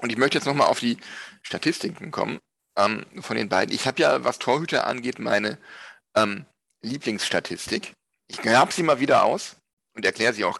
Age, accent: 40-59, German